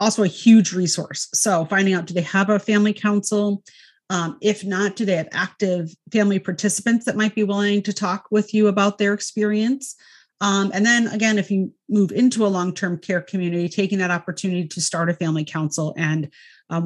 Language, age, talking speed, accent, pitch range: English, 30-49, 195 wpm, American, 170-210 Hz